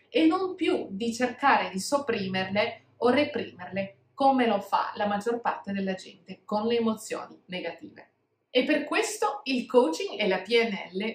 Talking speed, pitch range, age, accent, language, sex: 155 wpm, 205-270 Hz, 30-49, native, Italian, female